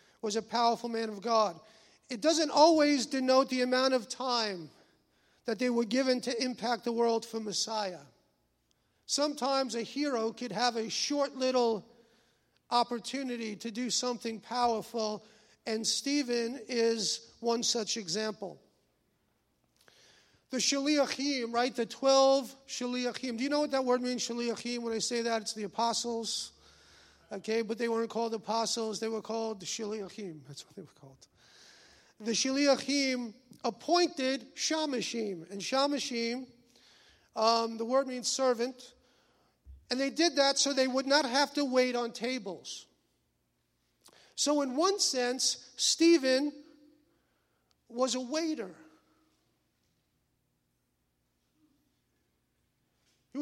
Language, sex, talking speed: English, male, 125 wpm